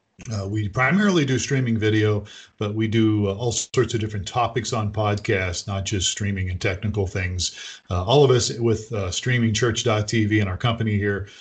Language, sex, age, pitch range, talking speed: English, male, 40-59, 100-130 Hz, 180 wpm